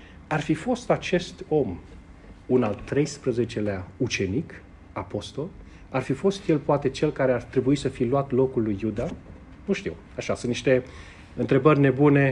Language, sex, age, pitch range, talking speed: Romanian, male, 40-59, 110-155 Hz, 155 wpm